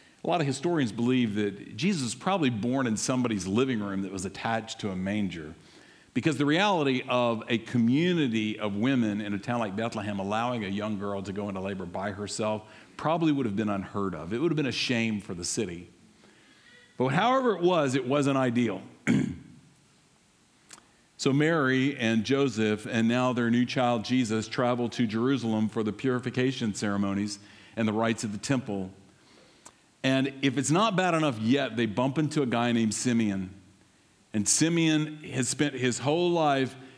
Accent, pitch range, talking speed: American, 110-135 Hz, 175 wpm